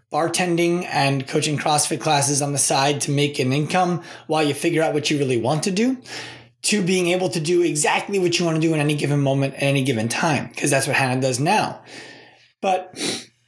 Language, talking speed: English, 210 wpm